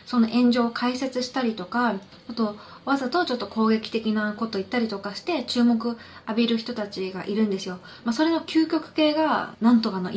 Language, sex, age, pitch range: Japanese, female, 20-39, 195-245 Hz